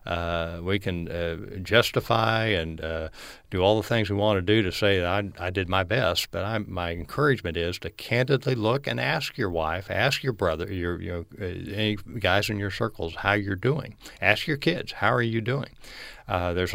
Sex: male